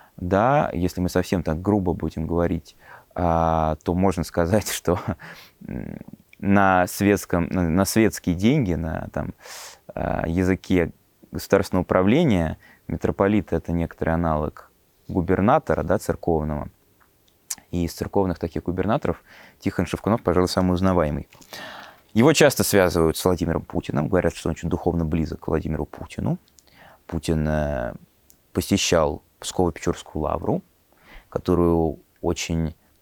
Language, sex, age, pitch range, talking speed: Russian, male, 20-39, 80-100 Hz, 105 wpm